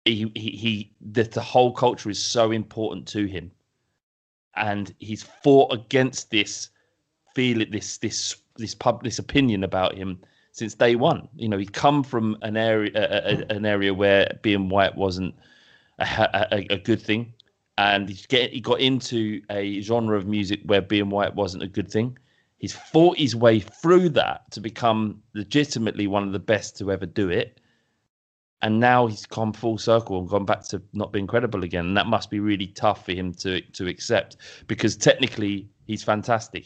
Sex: male